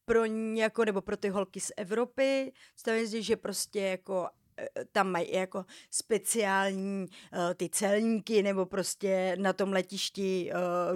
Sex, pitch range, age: female, 195-230 Hz, 30-49